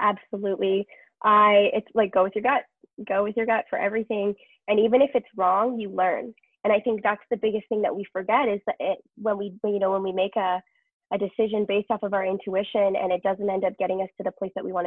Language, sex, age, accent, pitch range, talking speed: English, female, 20-39, American, 190-230 Hz, 250 wpm